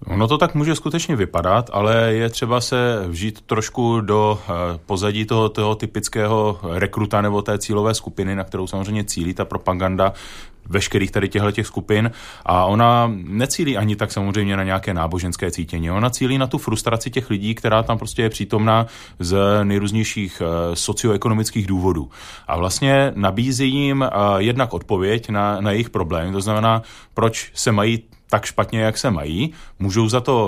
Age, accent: 30-49, native